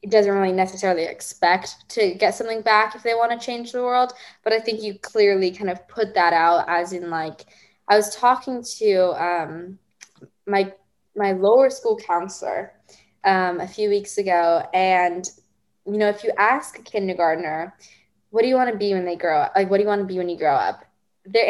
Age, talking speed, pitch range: 10-29, 205 wpm, 180-220 Hz